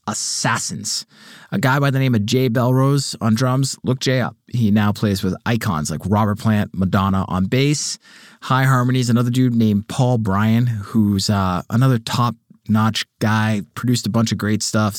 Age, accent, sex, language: 20-39, American, male, English